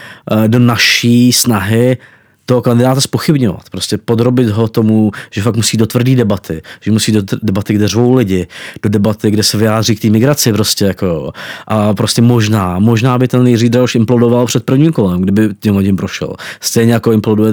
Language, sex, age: Czech, male, 20-39